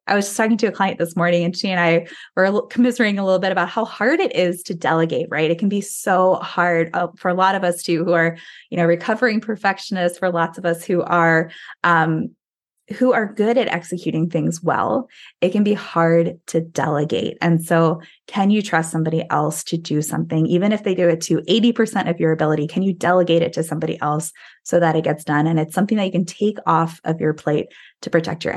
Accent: American